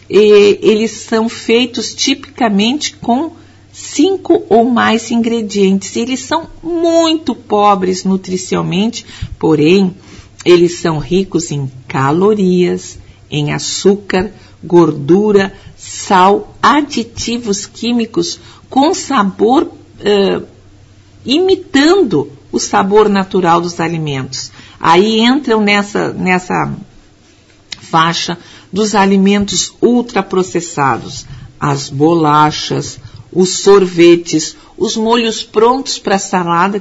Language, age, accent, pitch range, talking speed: Portuguese, 50-69, Brazilian, 170-230 Hz, 85 wpm